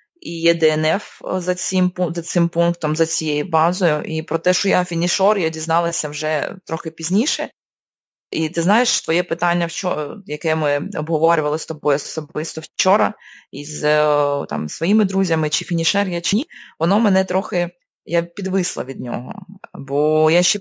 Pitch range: 155-185 Hz